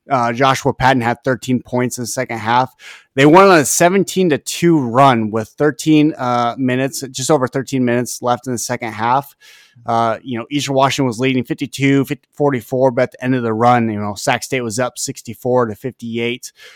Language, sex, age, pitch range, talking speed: English, male, 20-39, 120-135 Hz, 200 wpm